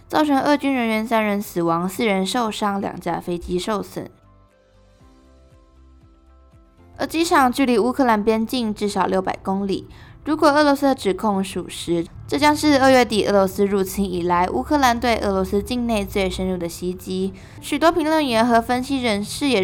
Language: Chinese